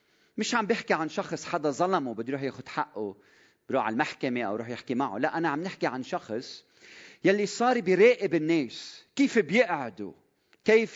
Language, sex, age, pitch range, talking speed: Arabic, male, 40-59, 130-205 Hz, 170 wpm